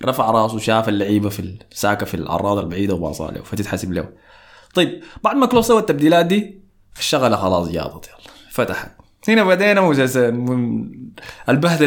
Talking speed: 150 wpm